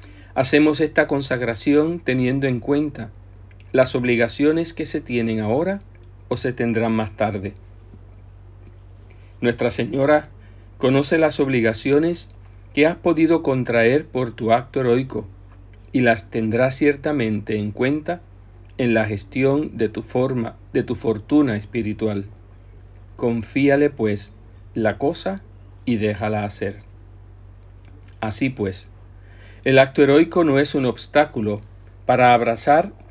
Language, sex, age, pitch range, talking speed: Spanish, male, 50-69, 95-135 Hz, 115 wpm